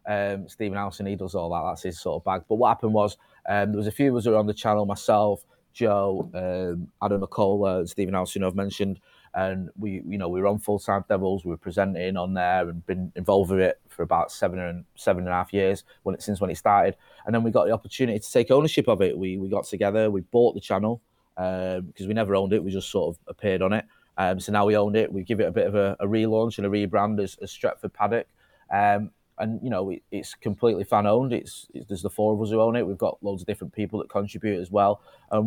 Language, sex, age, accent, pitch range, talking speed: English, male, 20-39, British, 95-110 Hz, 260 wpm